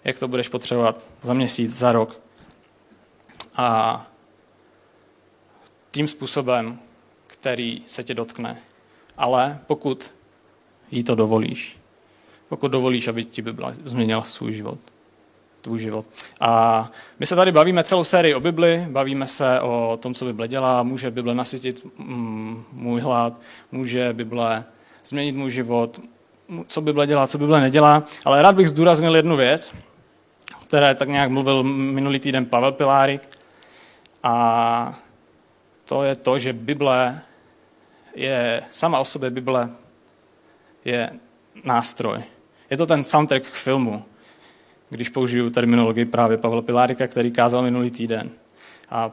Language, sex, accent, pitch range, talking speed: Czech, male, native, 120-140 Hz, 130 wpm